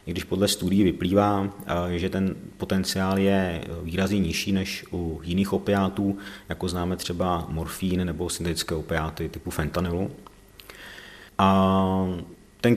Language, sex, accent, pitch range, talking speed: Czech, male, native, 85-100 Hz, 120 wpm